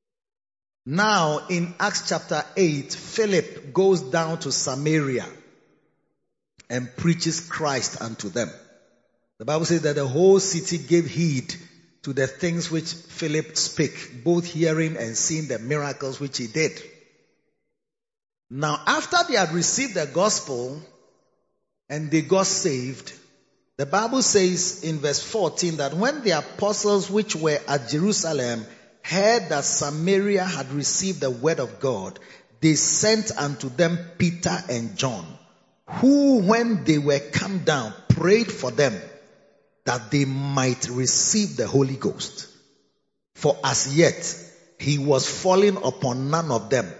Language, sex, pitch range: English, male, 135-185 Hz